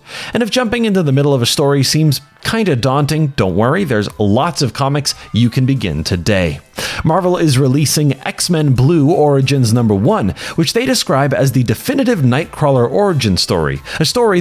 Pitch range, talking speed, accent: 115-155 Hz, 175 wpm, American